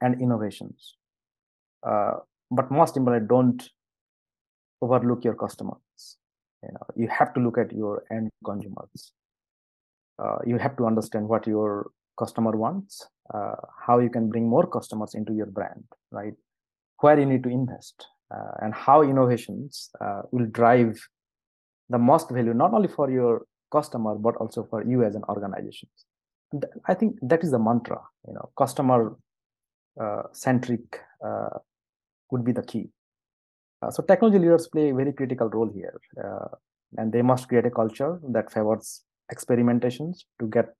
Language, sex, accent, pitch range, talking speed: English, male, Indian, 110-125 Hz, 155 wpm